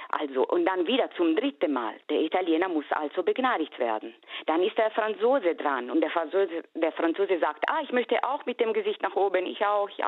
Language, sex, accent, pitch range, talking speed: German, female, German, 155-250 Hz, 215 wpm